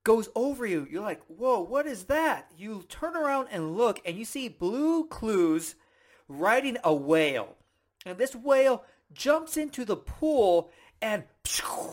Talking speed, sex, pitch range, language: 150 wpm, male, 195-280 Hz, English